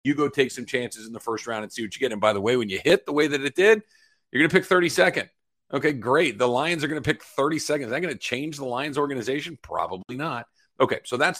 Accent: American